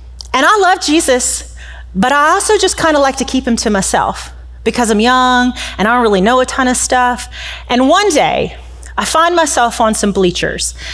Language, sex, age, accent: English, female, 30-49, American